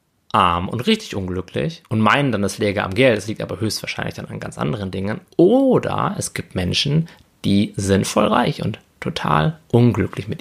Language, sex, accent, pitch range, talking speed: German, male, German, 100-145 Hz, 185 wpm